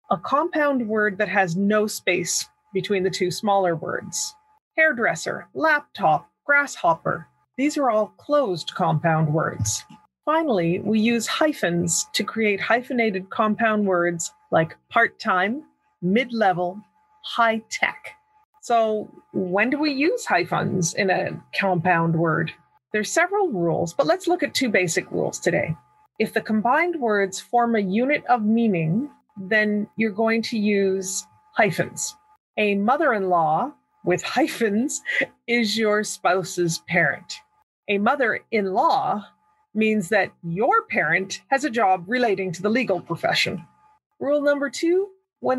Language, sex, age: English, female, 30-49